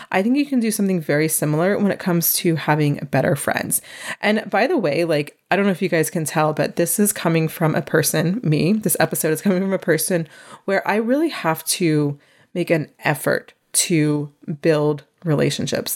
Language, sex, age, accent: English, female, 20-39, American